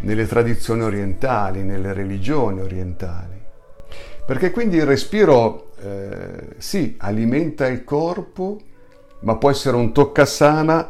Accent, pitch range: native, 100-130 Hz